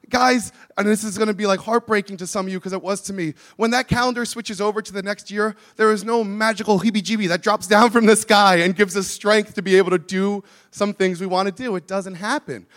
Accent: American